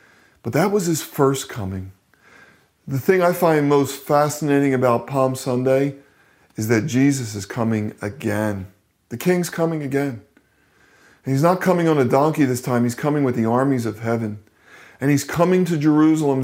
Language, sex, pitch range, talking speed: English, male, 115-140 Hz, 170 wpm